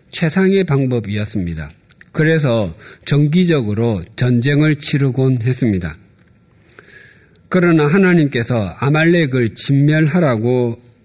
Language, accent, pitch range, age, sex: Korean, native, 110-150 Hz, 50-69, male